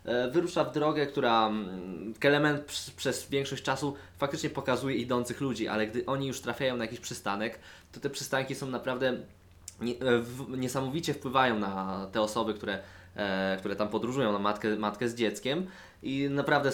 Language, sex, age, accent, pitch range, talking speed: Polish, male, 20-39, native, 105-125 Hz, 145 wpm